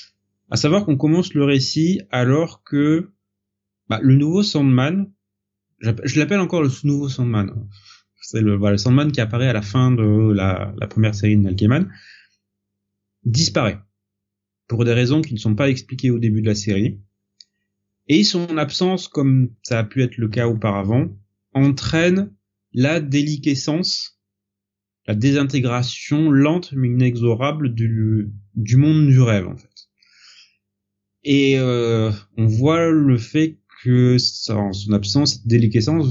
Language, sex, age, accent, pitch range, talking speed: French, male, 30-49, French, 100-140 Hz, 145 wpm